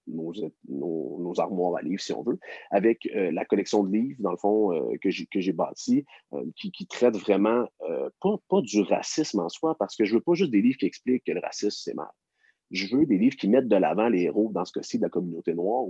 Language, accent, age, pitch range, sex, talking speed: French, Canadian, 40-59, 100-155 Hz, male, 255 wpm